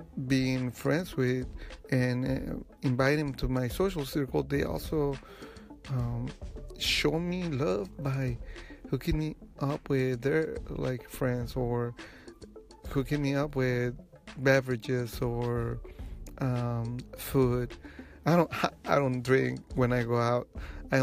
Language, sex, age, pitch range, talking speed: English, male, 30-49, 120-135 Hz, 125 wpm